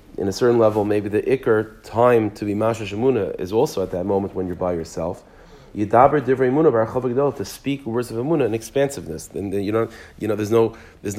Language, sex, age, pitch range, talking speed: English, male, 40-59, 100-120 Hz, 200 wpm